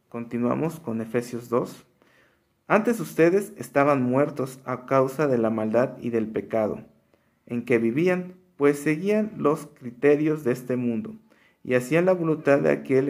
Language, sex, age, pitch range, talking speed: Spanish, male, 50-69, 115-145 Hz, 145 wpm